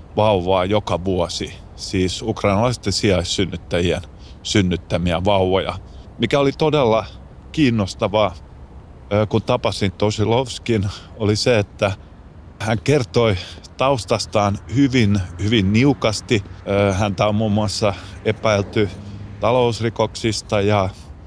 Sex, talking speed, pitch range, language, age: male, 90 wpm, 95-115 Hz, Finnish, 30-49